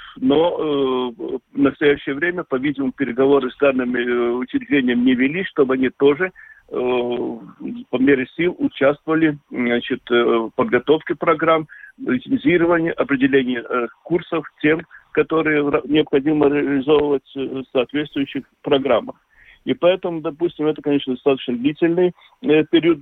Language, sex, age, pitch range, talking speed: Russian, male, 50-69, 130-160 Hz, 110 wpm